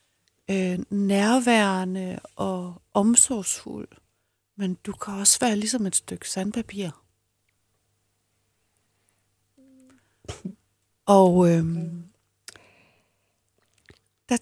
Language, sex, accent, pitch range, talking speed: Danish, female, native, 155-225 Hz, 60 wpm